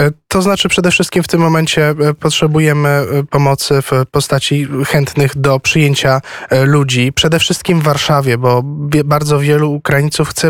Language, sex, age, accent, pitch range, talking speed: Polish, male, 20-39, native, 140-165 Hz, 135 wpm